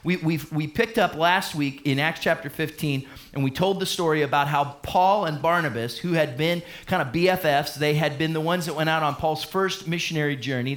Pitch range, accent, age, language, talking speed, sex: 145-190 Hz, American, 30-49, English, 225 wpm, male